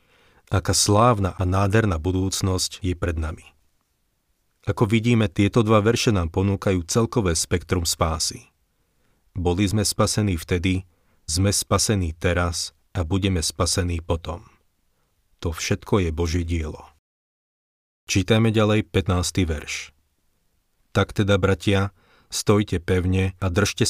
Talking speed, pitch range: 115 wpm, 85-100 Hz